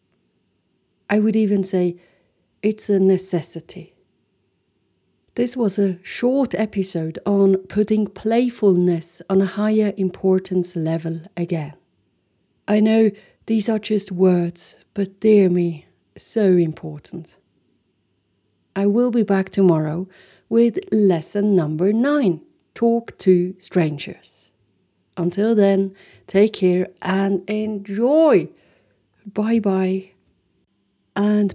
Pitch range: 180-210 Hz